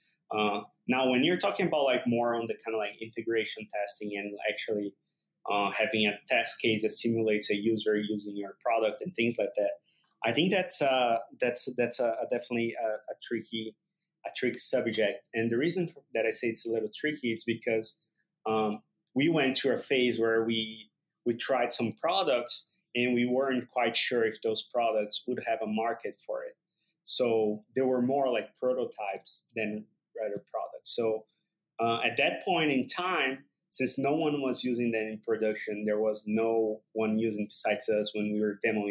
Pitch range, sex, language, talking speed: 110-130 Hz, male, English, 185 wpm